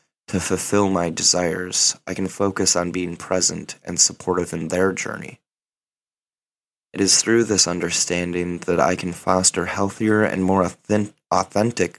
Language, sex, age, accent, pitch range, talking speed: English, male, 20-39, American, 90-100 Hz, 140 wpm